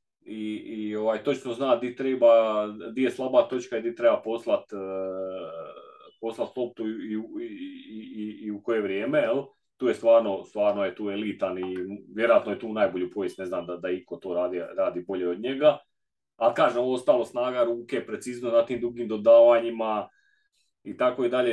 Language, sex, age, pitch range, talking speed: Croatian, male, 30-49, 110-140 Hz, 180 wpm